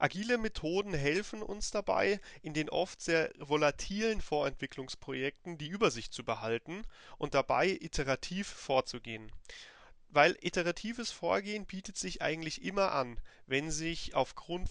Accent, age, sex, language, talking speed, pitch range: German, 30-49, male, German, 120 wpm, 140-195 Hz